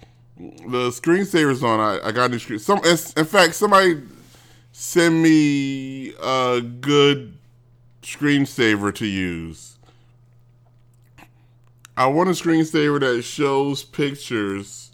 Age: 30-49